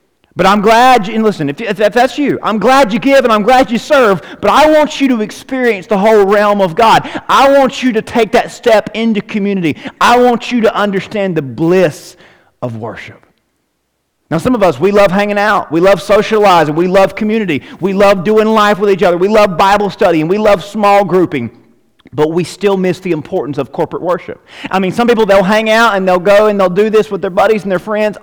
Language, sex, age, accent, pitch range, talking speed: English, male, 40-59, American, 195-245 Hz, 225 wpm